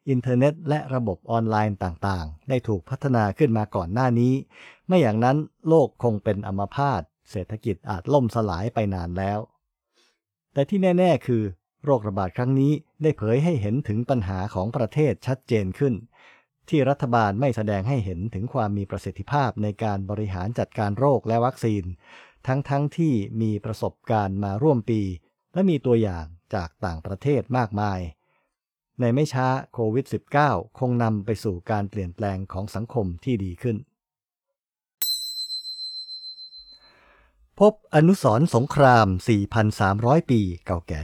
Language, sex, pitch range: English, male, 100-135 Hz